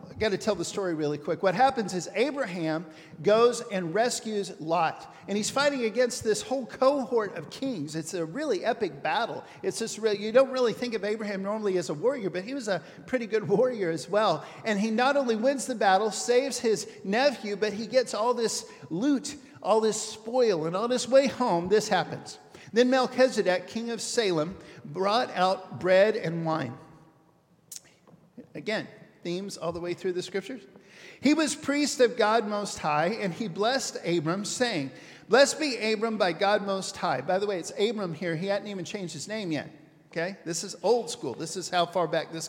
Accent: American